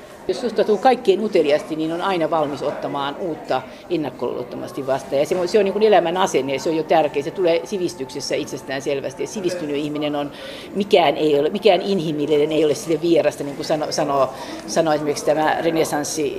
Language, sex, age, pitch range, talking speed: Finnish, female, 50-69, 150-190 Hz, 185 wpm